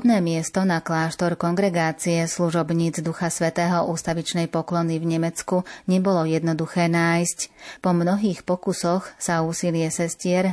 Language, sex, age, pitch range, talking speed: Slovak, female, 30-49, 165-180 Hz, 120 wpm